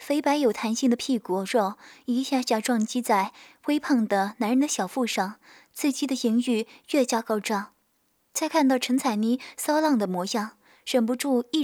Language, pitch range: Chinese, 220-275 Hz